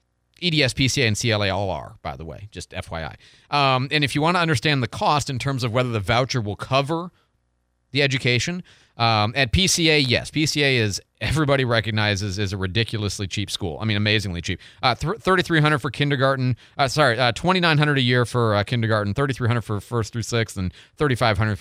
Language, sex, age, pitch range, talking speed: English, male, 30-49, 100-135 Hz, 185 wpm